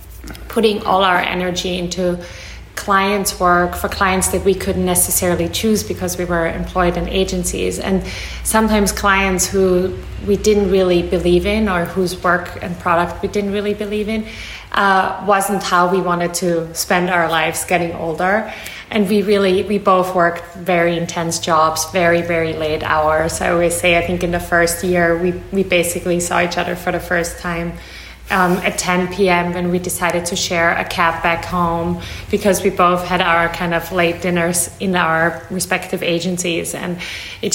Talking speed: 175 wpm